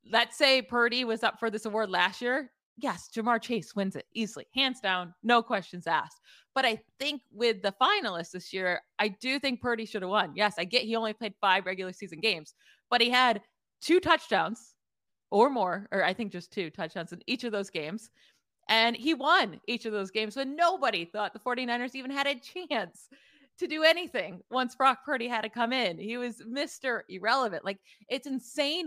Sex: female